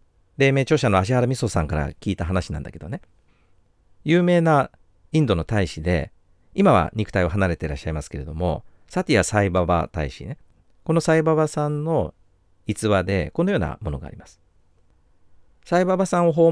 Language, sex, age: Japanese, male, 40-59